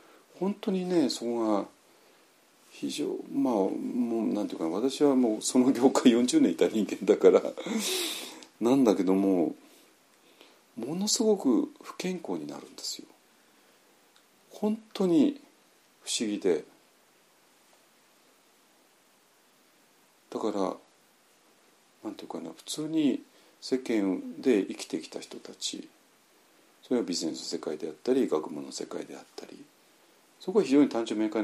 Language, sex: Japanese, male